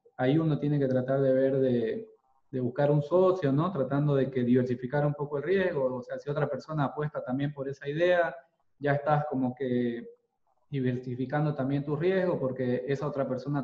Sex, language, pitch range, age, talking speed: male, Spanish, 130-150 Hz, 20-39, 190 wpm